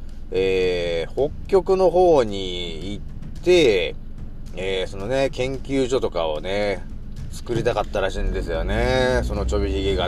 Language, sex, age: Japanese, male, 30-49